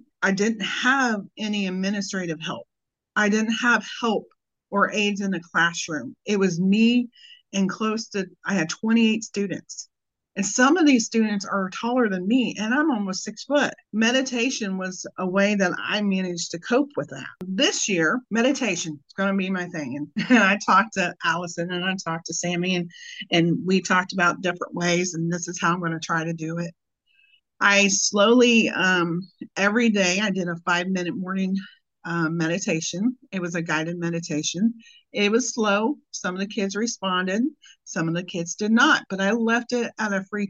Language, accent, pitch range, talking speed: English, American, 175-225 Hz, 185 wpm